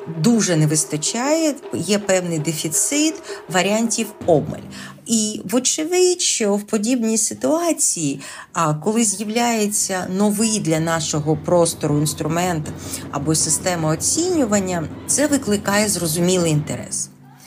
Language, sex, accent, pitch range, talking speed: Ukrainian, female, native, 170-245 Hz, 95 wpm